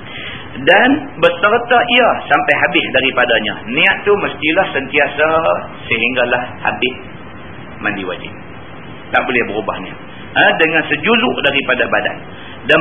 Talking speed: 110 wpm